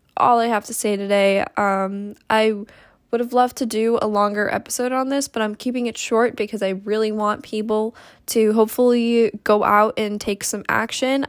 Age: 10-29